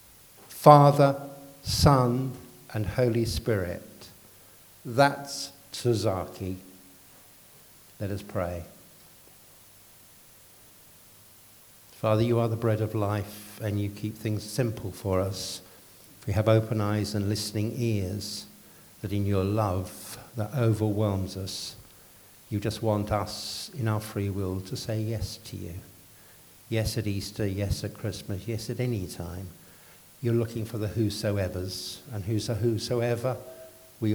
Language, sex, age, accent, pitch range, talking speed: English, male, 60-79, British, 95-110 Hz, 125 wpm